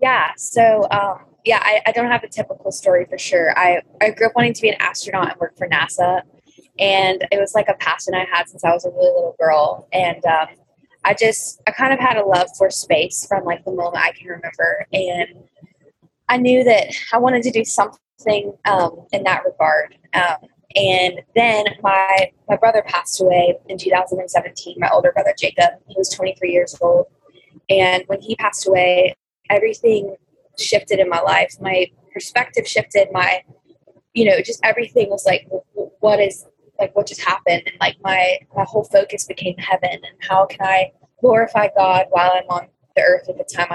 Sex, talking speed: female, 190 wpm